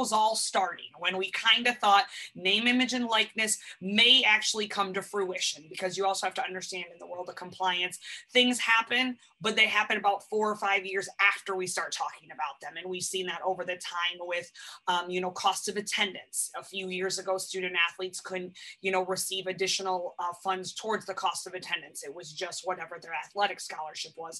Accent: American